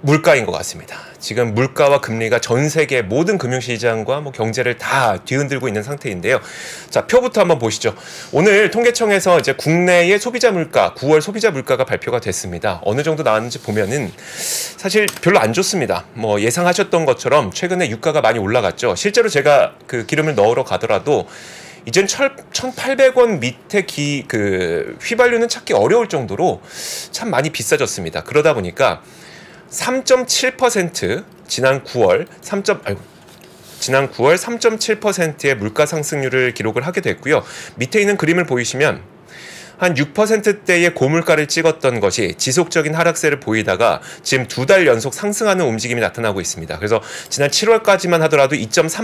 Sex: male